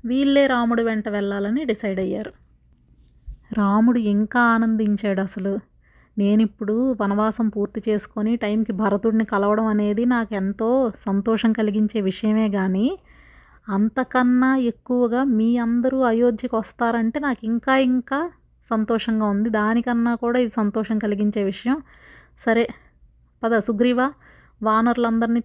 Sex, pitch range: female, 215-245 Hz